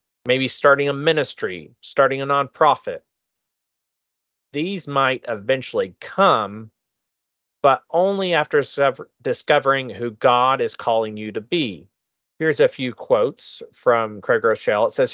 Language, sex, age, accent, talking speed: English, male, 40-59, American, 125 wpm